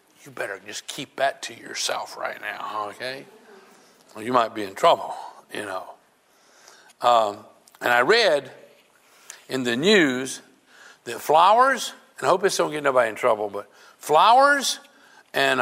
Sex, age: male, 60-79